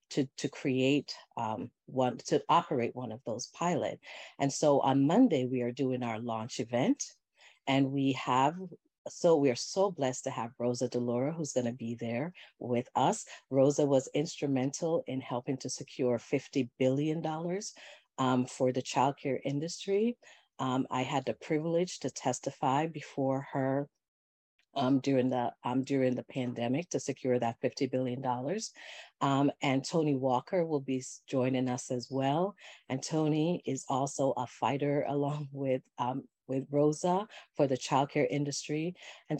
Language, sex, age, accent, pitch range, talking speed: English, female, 40-59, American, 125-150 Hz, 155 wpm